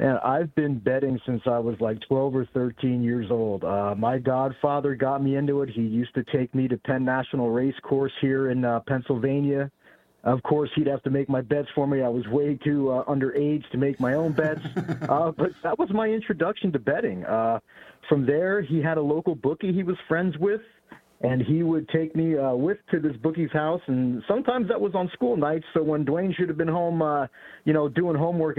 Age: 40-59